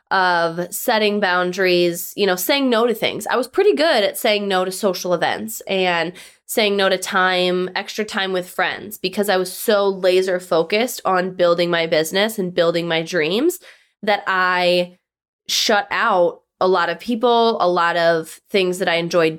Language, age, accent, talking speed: English, 20-39, American, 175 wpm